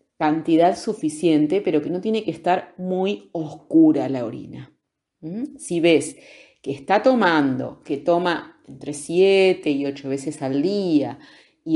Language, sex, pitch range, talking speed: Spanish, female, 150-210 Hz, 140 wpm